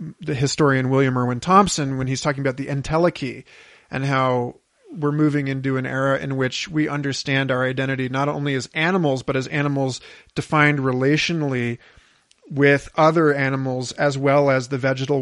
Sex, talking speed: male, 160 wpm